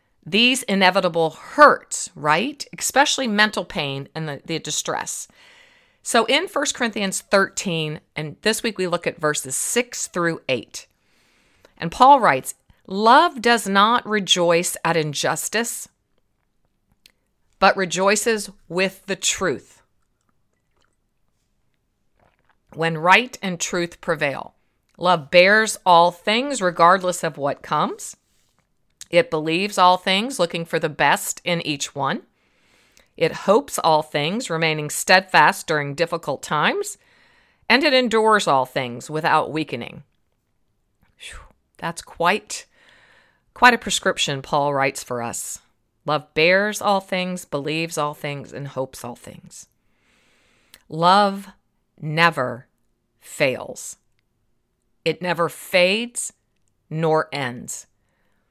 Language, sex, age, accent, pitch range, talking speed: English, female, 40-59, American, 150-205 Hz, 110 wpm